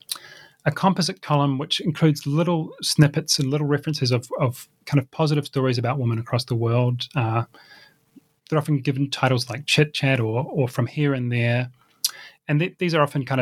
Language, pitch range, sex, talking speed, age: English, 125-150 Hz, male, 185 wpm, 30-49